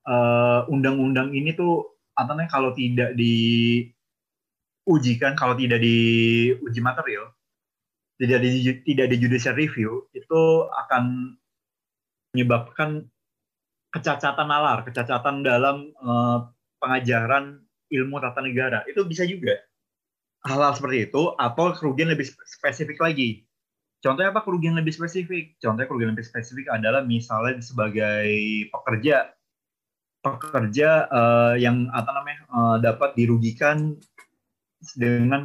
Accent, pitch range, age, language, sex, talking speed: native, 120-145 Hz, 30-49, Indonesian, male, 110 wpm